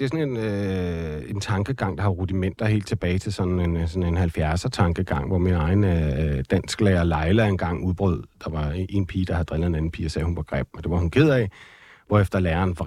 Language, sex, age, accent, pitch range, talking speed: Danish, male, 40-59, native, 90-115 Hz, 245 wpm